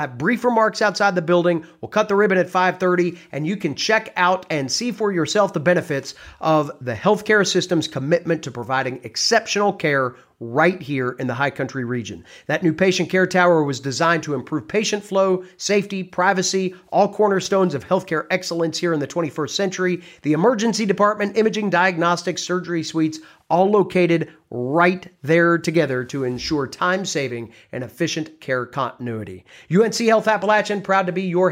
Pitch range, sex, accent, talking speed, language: 150-205 Hz, male, American, 170 wpm, English